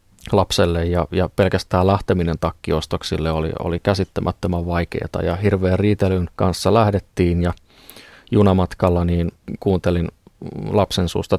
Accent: native